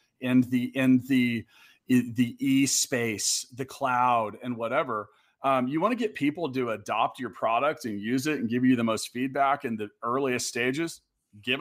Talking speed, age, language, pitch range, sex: 180 wpm, 30-49, English, 120-145 Hz, male